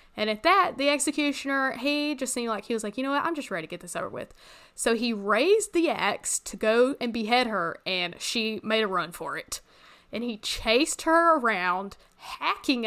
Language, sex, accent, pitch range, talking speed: English, female, American, 200-265 Hz, 215 wpm